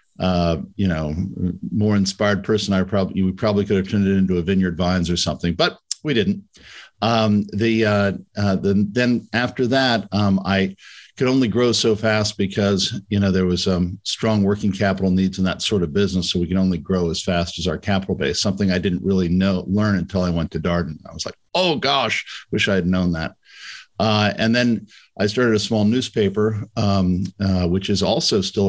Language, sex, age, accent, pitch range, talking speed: English, male, 50-69, American, 90-105 Hz, 205 wpm